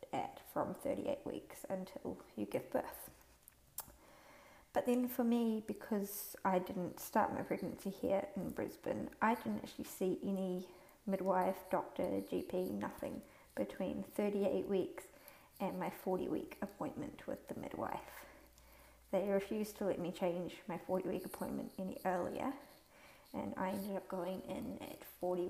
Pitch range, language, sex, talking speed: 185-215 Hz, English, female, 140 wpm